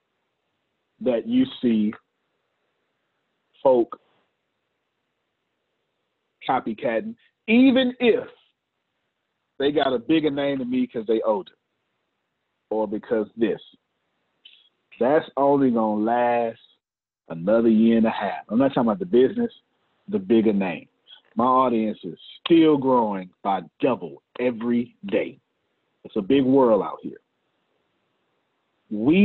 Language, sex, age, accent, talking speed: English, male, 40-59, American, 115 wpm